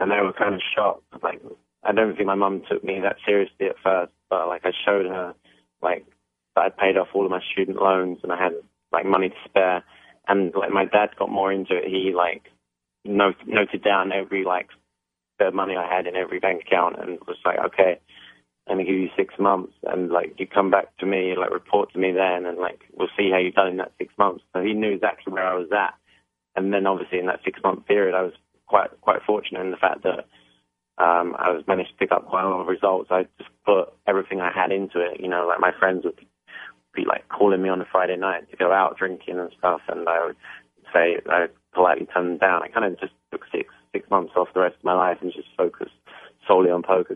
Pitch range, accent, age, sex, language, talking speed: 90-95 Hz, British, 20-39, male, English, 240 wpm